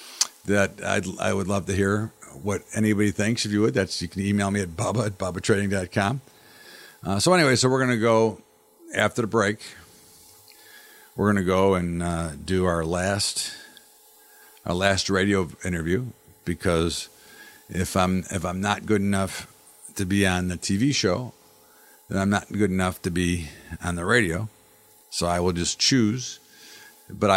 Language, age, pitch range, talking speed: English, 50-69, 90-110 Hz, 165 wpm